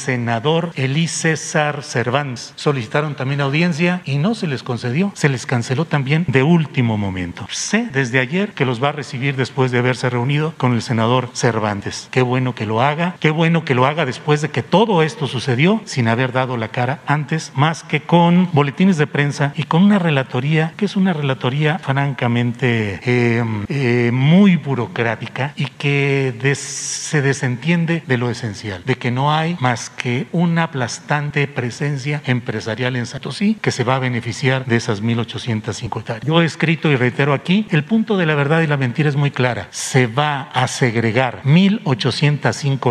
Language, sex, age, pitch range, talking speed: Spanish, male, 40-59, 125-155 Hz, 180 wpm